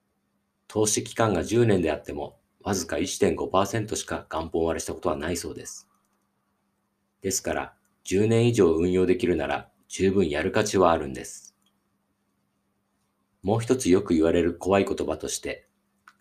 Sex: male